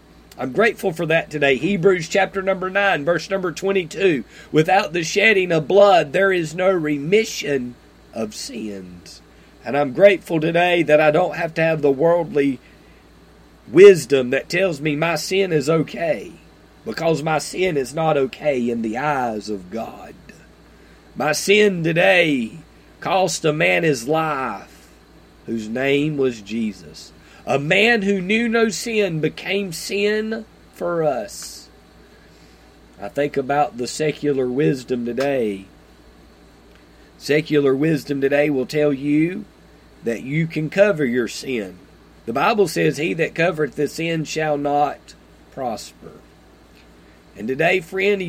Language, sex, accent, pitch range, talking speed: English, male, American, 135-180 Hz, 135 wpm